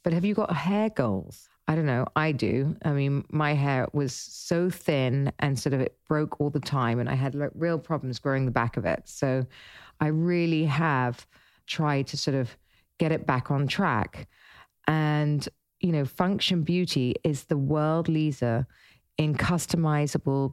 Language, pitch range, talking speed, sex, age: English, 135-165 Hz, 175 wpm, female, 40-59